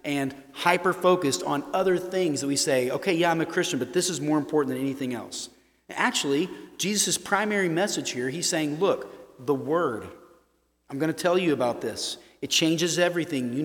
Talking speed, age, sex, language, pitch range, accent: 185 wpm, 30-49, male, English, 140-185 Hz, American